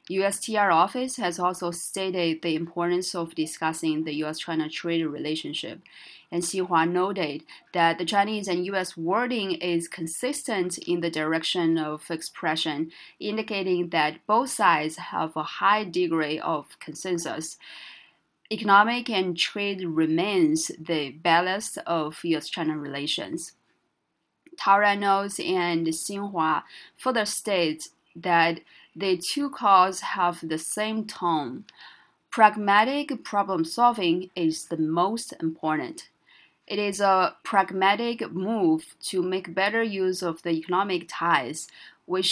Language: English